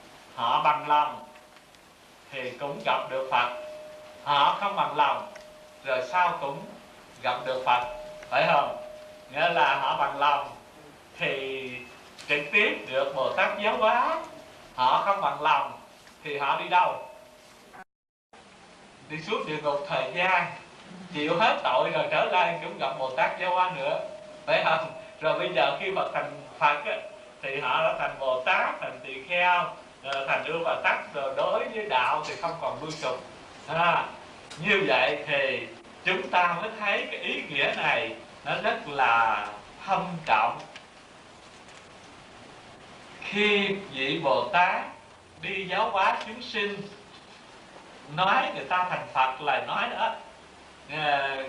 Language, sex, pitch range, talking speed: Vietnamese, male, 135-220 Hz, 145 wpm